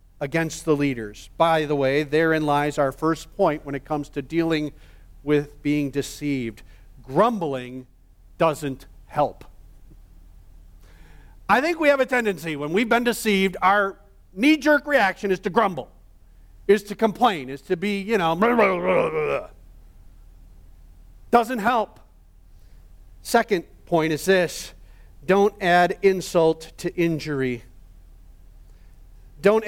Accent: American